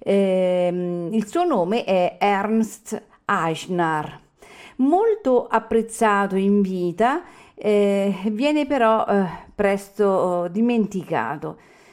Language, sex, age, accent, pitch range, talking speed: Italian, female, 50-69, native, 175-225 Hz, 85 wpm